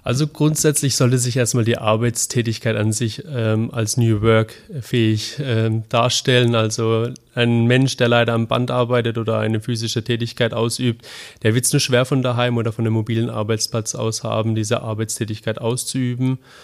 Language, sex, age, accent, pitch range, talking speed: German, male, 30-49, German, 110-125 Hz, 165 wpm